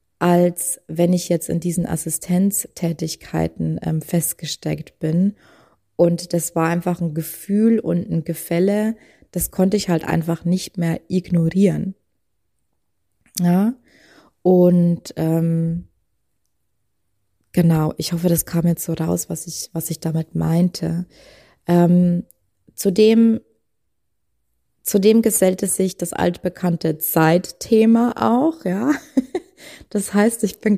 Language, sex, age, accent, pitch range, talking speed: German, female, 20-39, German, 165-195 Hz, 115 wpm